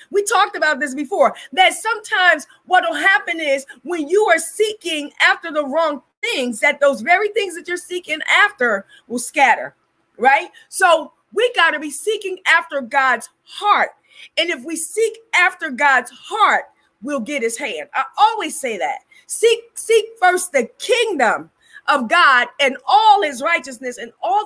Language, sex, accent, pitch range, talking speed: English, female, American, 285-400 Hz, 165 wpm